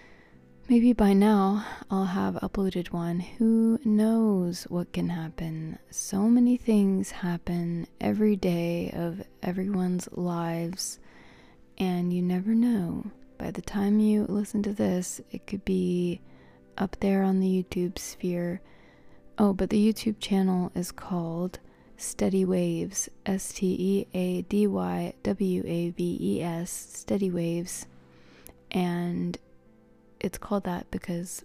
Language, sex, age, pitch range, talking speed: English, female, 20-39, 175-200 Hz, 110 wpm